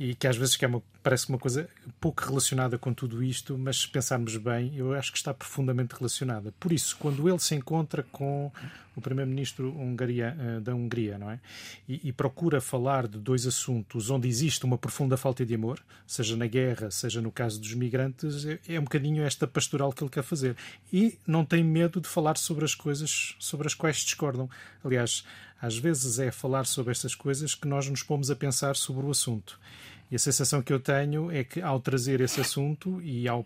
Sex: male